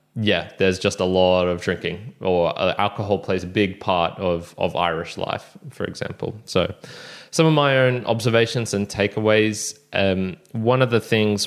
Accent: Australian